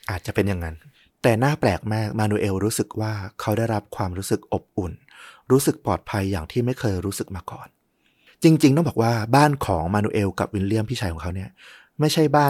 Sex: male